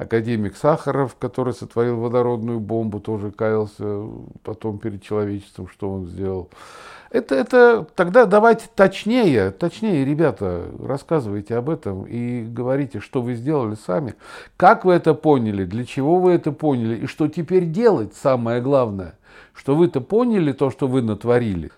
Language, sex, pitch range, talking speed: Russian, male, 110-155 Hz, 145 wpm